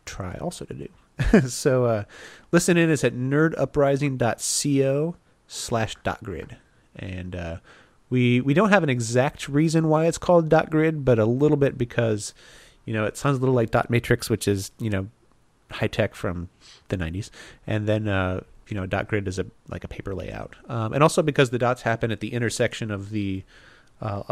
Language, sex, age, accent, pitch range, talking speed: English, male, 30-49, American, 100-135 Hz, 195 wpm